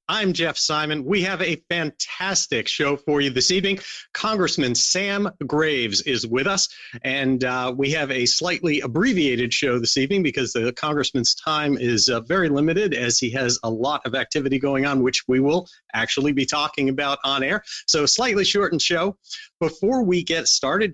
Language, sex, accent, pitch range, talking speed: English, male, American, 135-180 Hz, 180 wpm